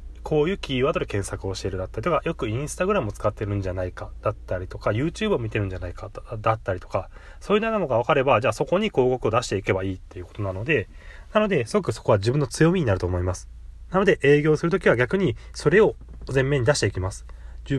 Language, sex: Japanese, male